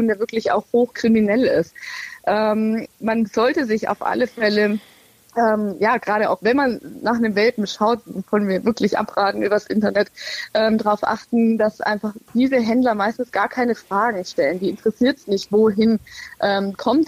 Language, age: German, 20-39